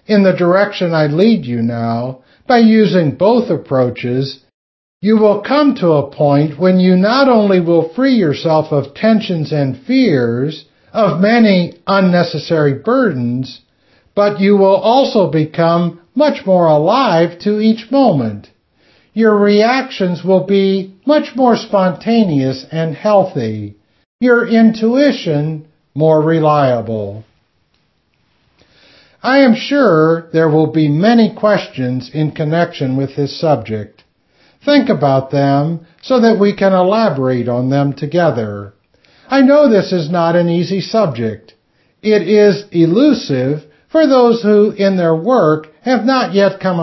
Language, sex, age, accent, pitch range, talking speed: English, male, 60-79, American, 145-220 Hz, 130 wpm